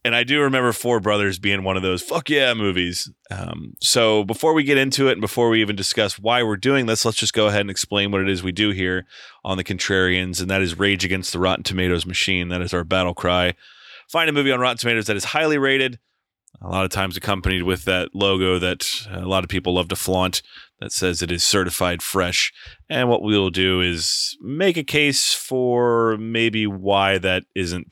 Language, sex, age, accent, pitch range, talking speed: English, male, 30-49, American, 95-115 Hz, 220 wpm